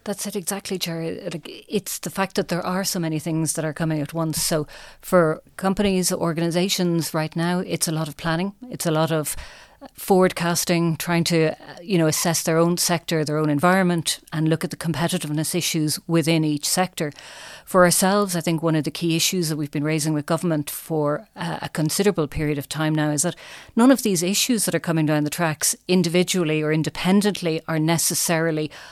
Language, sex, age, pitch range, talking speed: English, female, 40-59, 155-180 Hz, 195 wpm